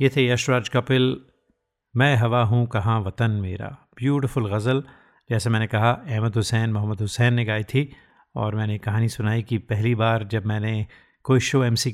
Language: Hindi